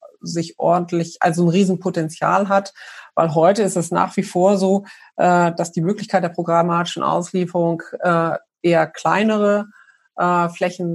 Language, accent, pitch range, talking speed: German, German, 170-190 Hz, 125 wpm